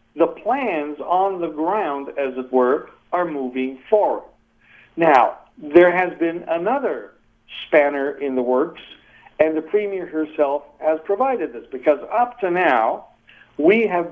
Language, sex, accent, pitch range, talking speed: English, male, American, 140-180 Hz, 140 wpm